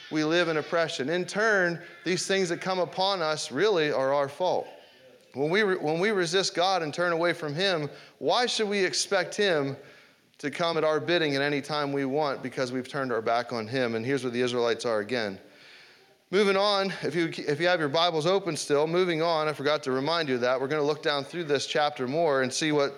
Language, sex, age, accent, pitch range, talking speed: English, male, 30-49, American, 150-195 Hz, 230 wpm